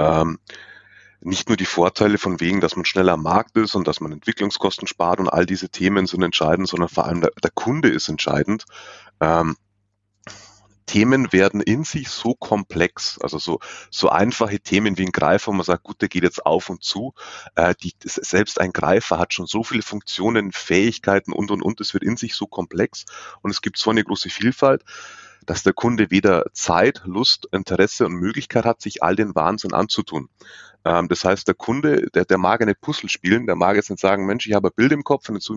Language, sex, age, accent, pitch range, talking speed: German, male, 30-49, German, 90-110 Hz, 205 wpm